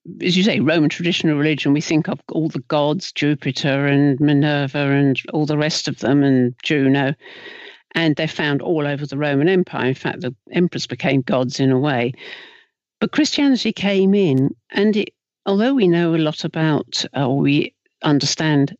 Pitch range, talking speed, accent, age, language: 145-200 Hz, 175 wpm, British, 50-69, English